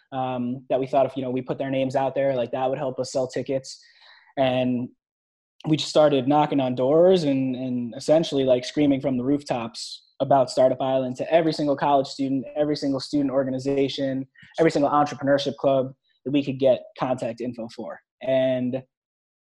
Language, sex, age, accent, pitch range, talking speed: English, male, 20-39, American, 130-150 Hz, 180 wpm